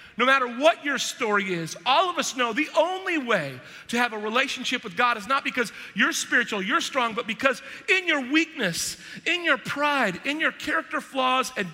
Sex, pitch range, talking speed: male, 205-285 Hz, 200 wpm